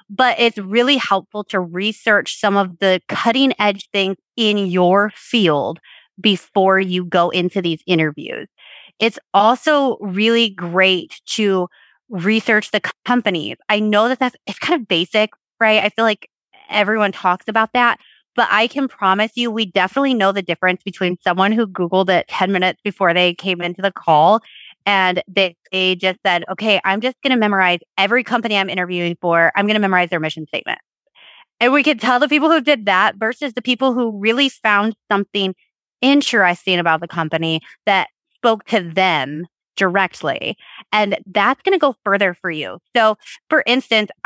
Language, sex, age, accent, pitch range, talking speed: English, female, 20-39, American, 185-230 Hz, 170 wpm